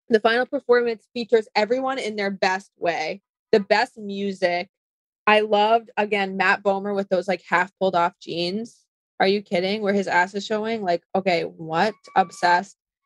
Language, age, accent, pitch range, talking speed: English, 20-39, American, 185-225 Hz, 165 wpm